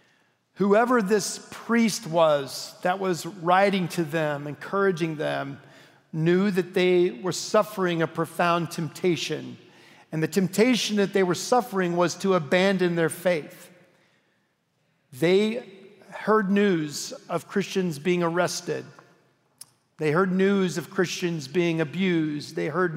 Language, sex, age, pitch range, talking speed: English, male, 50-69, 165-195 Hz, 125 wpm